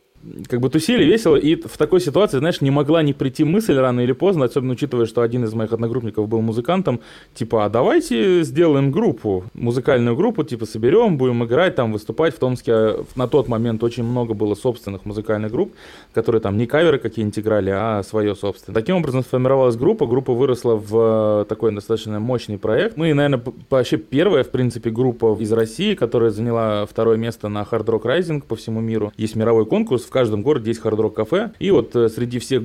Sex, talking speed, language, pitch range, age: male, 195 wpm, Russian, 110-130 Hz, 20-39